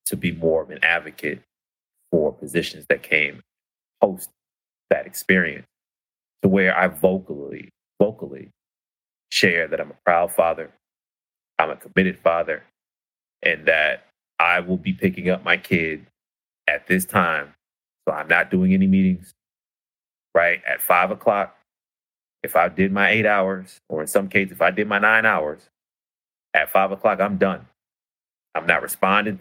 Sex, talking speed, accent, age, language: male, 150 wpm, American, 30-49, English